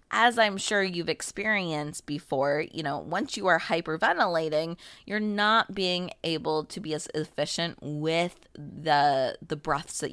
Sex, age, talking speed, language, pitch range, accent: female, 20-39, 150 wpm, English, 150-190 Hz, American